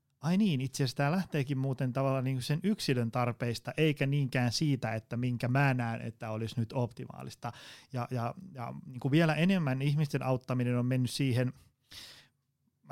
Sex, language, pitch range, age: male, Finnish, 120-145 Hz, 30-49